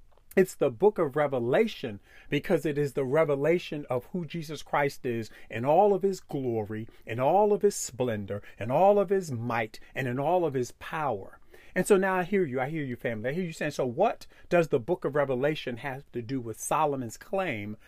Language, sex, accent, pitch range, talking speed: English, male, American, 125-185 Hz, 210 wpm